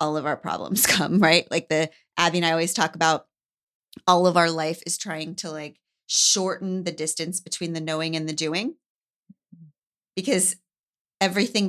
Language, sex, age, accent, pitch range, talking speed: English, female, 30-49, American, 170-220 Hz, 170 wpm